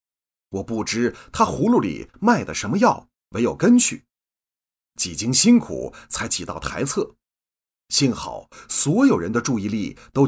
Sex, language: male, Chinese